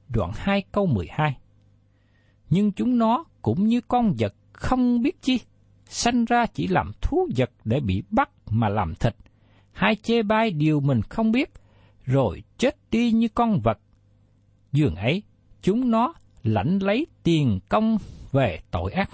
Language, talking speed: Vietnamese, 155 wpm